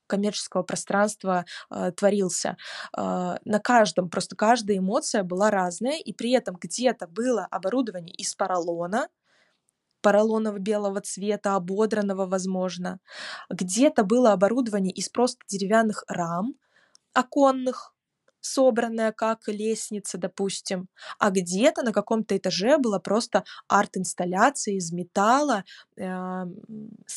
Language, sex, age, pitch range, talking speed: Russian, female, 20-39, 185-220 Hz, 105 wpm